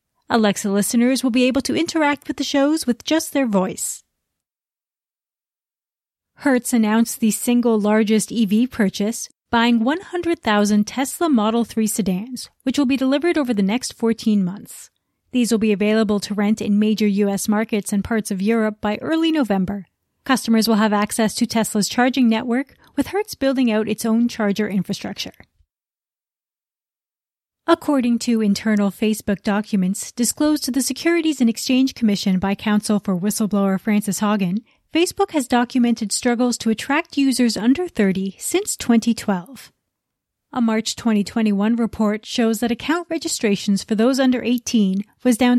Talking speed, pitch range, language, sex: 145 wpm, 210-265 Hz, English, female